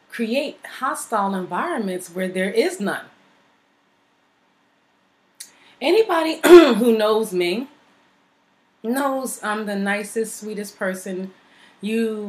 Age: 30-49